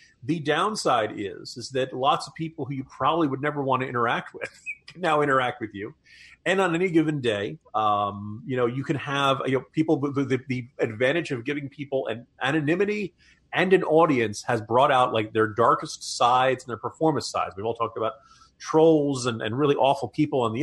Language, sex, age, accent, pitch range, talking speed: English, male, 40-59, American, 120-165 Hz, 205 wpm